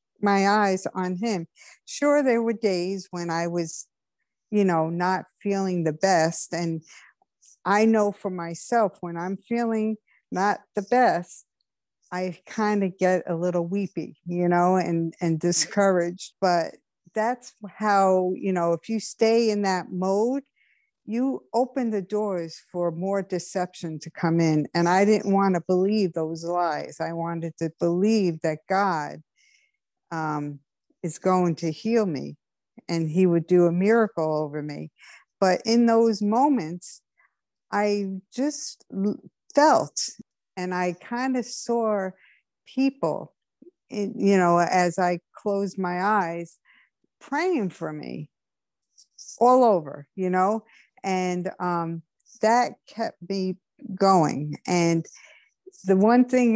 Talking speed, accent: 135 wpm, American